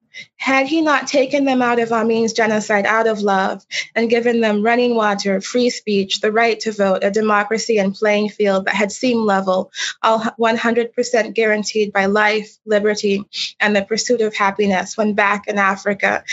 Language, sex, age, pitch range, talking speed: English, female, 20-39, 200-230 Hz, 175 wpm